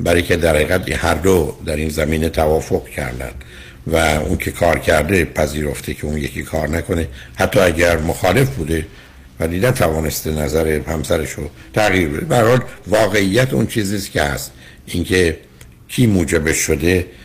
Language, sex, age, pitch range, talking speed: Persian, male, 60-79, 75-100 Hz, 155 wpm